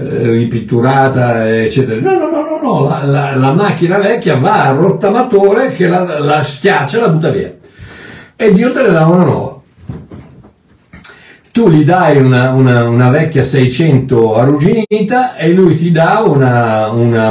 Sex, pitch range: male, 125-175 Hz